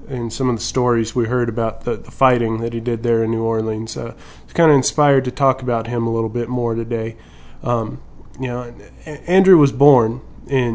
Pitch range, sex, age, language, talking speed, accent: 115-140 Hz, male, 20-39, English, 225 wpm, American